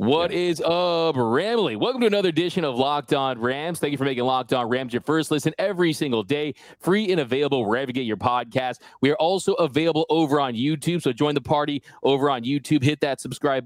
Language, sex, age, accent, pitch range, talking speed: English, male, 30-49, American, 135-160 Hz, 220 wpm